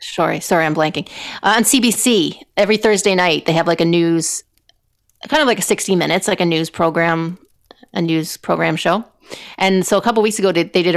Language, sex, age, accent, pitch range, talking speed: English, female, 30-49, American, 170-200 Hz, 210 wpm